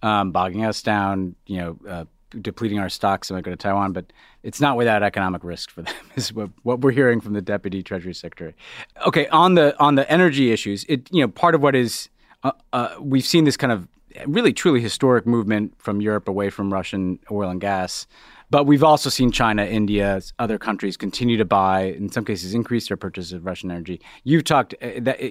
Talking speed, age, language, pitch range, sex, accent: 210 wpm, 30-49, English, 100-125 Hz, male, American